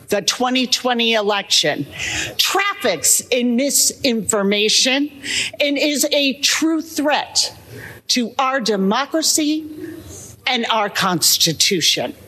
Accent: American